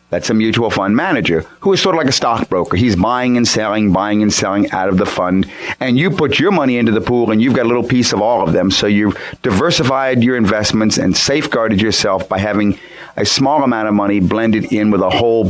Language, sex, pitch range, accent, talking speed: English, male, 100-120 Hz, American, 235 wpm